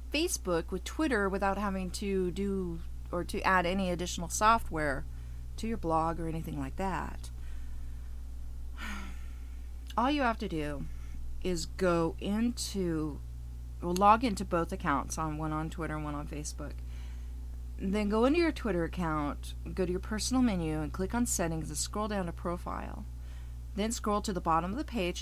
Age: 30-49